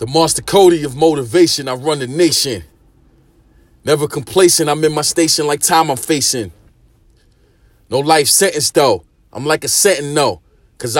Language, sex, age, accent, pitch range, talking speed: English, male, 30-49, American, 140-170 Hz, 155 wpm